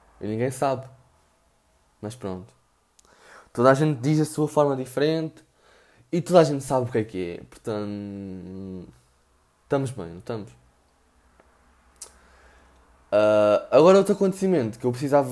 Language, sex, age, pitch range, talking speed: Portuguese, male, 20-39, 90-150 Hz, 135 wpm